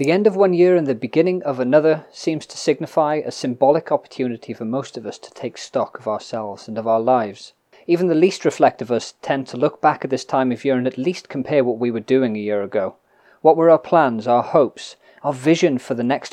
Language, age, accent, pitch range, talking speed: English, 30-49, British, 125-165 Hz, 245 wpm